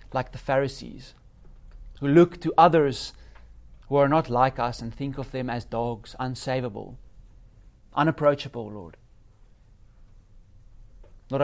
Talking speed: 115 wpm